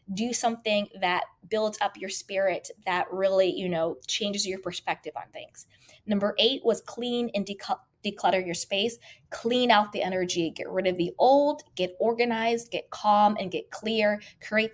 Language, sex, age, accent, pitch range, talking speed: English, female, 20-39, American, 180-225 Hz, 165 wpm